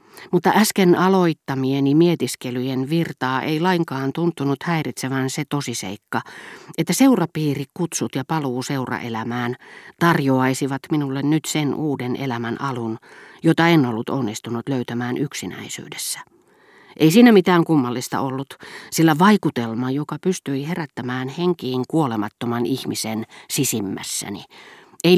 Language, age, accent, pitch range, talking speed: Finnish, 40-59, native, 125-170 Hz, 105 wpm